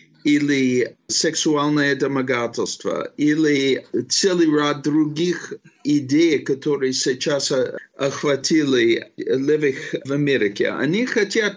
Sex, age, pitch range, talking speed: male, 50-69, 135-210 Hz, 85 wpm